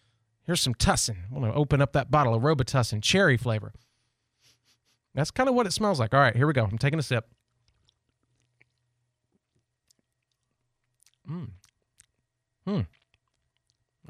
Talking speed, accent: 130 wpm, American